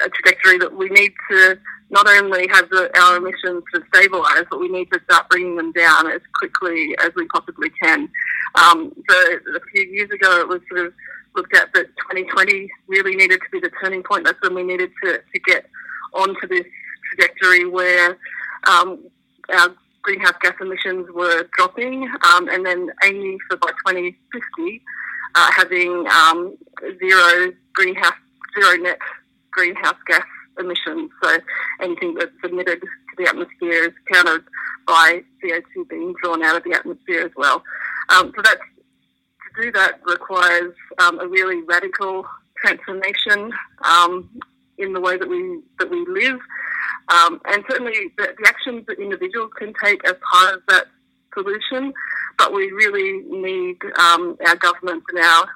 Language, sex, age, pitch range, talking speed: English, female, 30-49, 175-255 Hz, 160 wpm